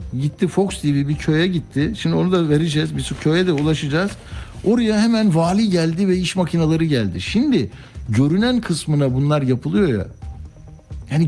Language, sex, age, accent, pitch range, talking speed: Turkish, male, 60-79, native, 125-175 Hz, 160 wpm